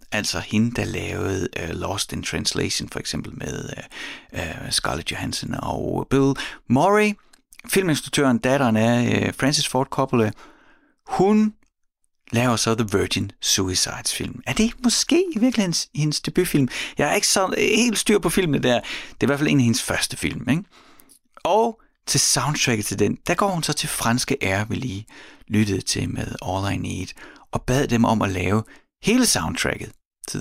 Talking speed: 175 wpm